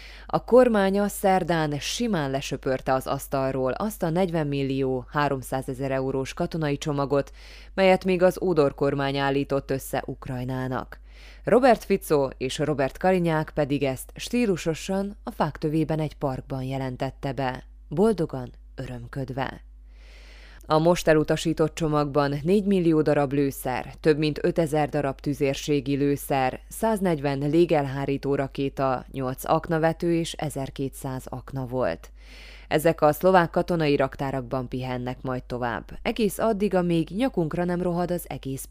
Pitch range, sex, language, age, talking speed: 135-175 Hz, female, Hungarian, 20-39, 120 wpm